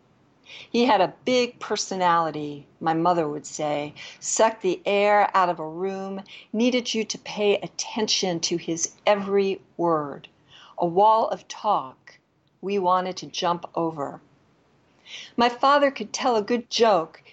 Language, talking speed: English, 140 wpm